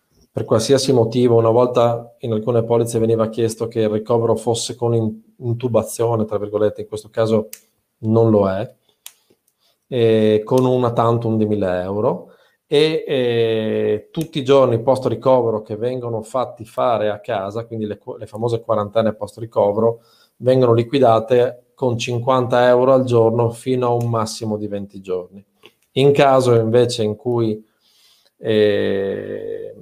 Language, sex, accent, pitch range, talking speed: Italian, male, native, 110-125 Hz, 145 wpm